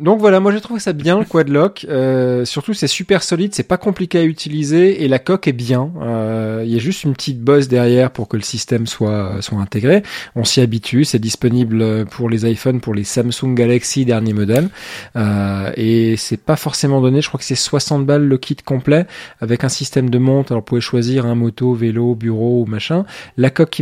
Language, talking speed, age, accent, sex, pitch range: French, 220 wpm, 20-39, French, male, 120-160 Hz